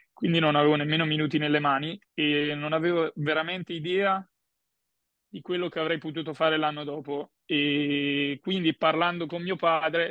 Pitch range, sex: 150-165 Hz, male